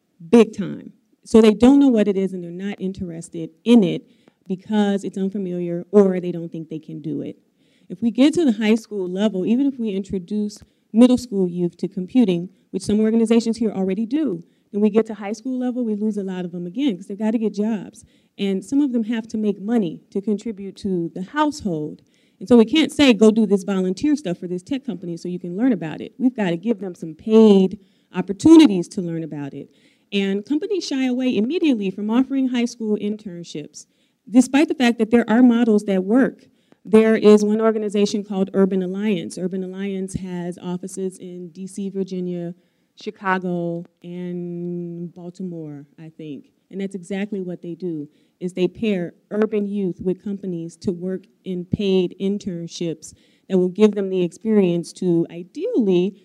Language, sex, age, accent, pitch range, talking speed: English, female, 30-49, American, 180-225 Hz, 190 wpm